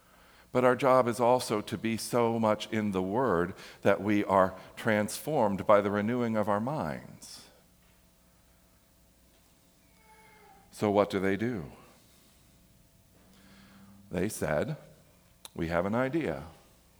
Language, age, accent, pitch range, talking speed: English, 50-69, American, 100-145 Hz, 115 wpm